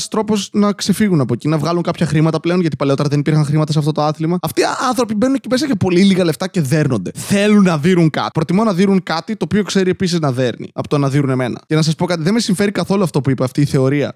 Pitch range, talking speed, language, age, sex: 145-200 Hz, 275 wpm, Greek, 20-39, male